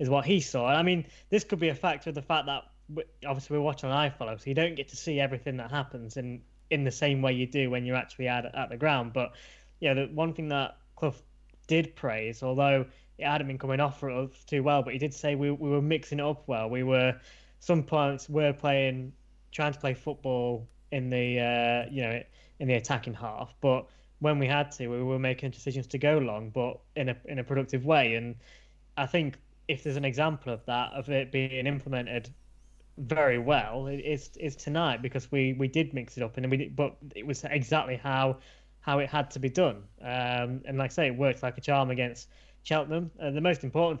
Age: 10-29